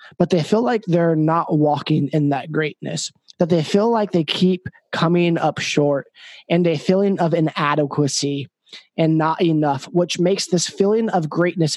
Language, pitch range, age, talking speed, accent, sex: English, 155-190 Hz, 20-39, 170 wpm, American, male